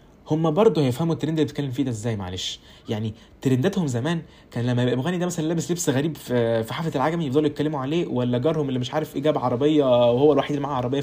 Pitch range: 125-175 Hz